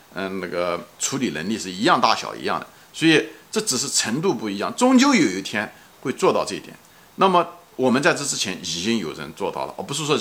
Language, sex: Chinese, male